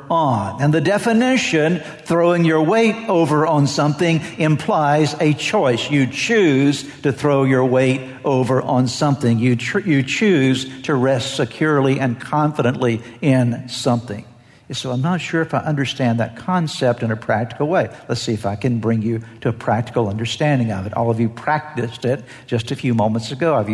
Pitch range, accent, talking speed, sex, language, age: 120-155 Hz, American, 175 wpm, male, English, 60-79